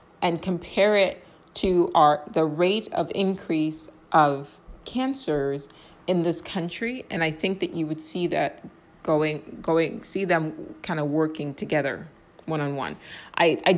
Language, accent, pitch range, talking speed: English, American, 155-195 Hz, 150 wpm